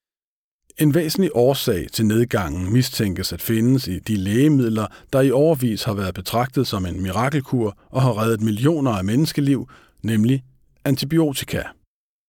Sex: male